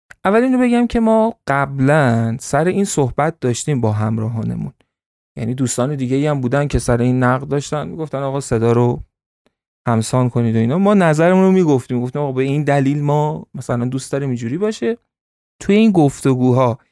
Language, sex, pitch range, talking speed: Persian, male, 120-160 Hz, 175 wpm